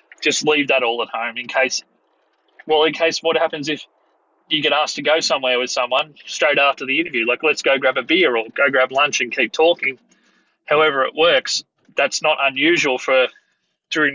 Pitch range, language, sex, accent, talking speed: 130-165 Hz, English, male, Australian, 200 wpm